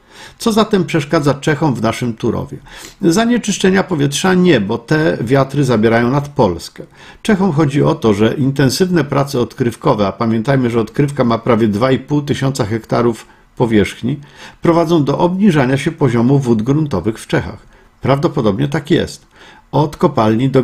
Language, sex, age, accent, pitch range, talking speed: Polish, male, 50-69, native, 115-155 Hz, 140 wpm